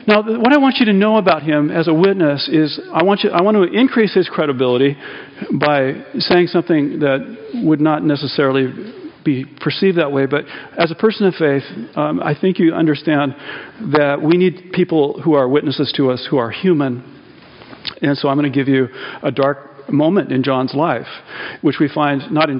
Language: English